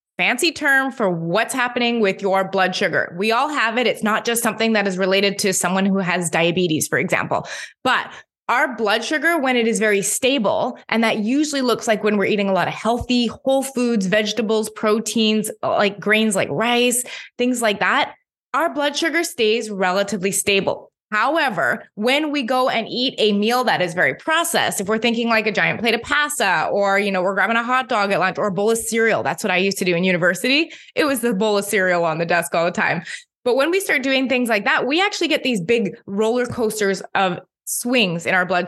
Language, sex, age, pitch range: English, female, 20-39, 200-255 Hz